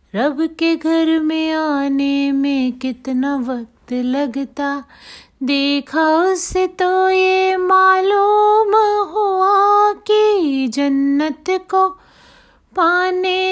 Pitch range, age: 275-370 Hz, 30-49